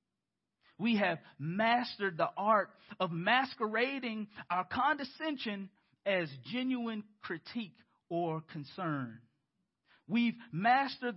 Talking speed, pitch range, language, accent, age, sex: 85 wpm, 175-245 Hz, English, American, 40-59, male